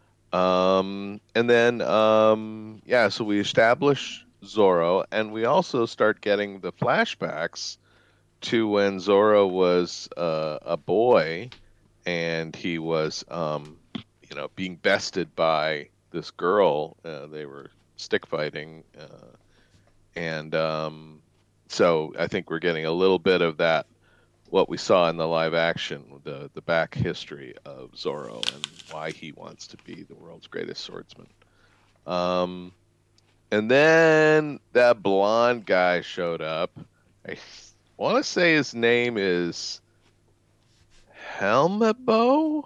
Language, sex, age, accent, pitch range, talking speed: English, male, 40-59, American, 85-115 Hz, 130 wpm